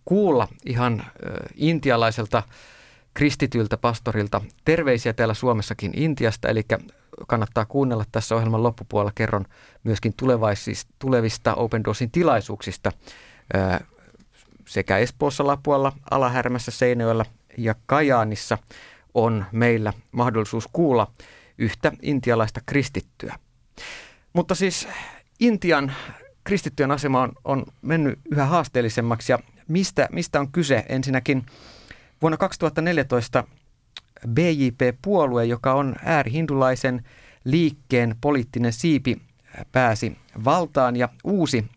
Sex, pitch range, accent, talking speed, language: male, 115-140 Hz, native, 95 wpm, Finnish